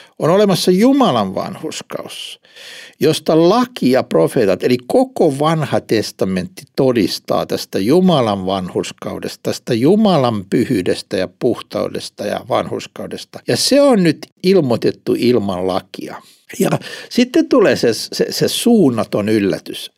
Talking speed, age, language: 115 wpm, 60-79, Finnish